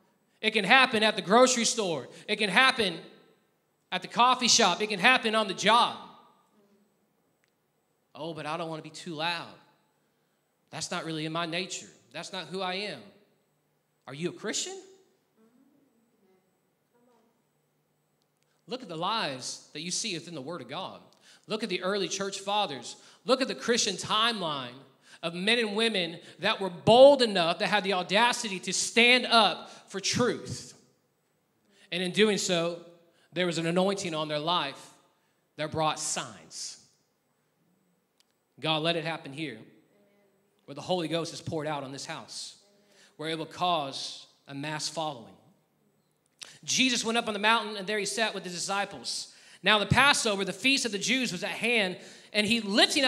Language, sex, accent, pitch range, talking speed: English, male, American, 170-220 Hz, 165 wpm